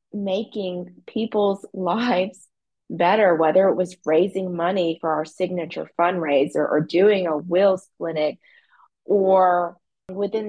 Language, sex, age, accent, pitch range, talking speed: English, female, 30-49, American, 175-205 Hz, 115 wpm